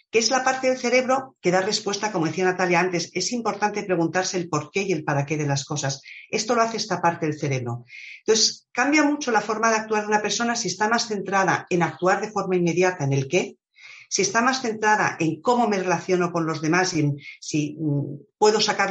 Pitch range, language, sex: 155-210 Hz, Spanish, female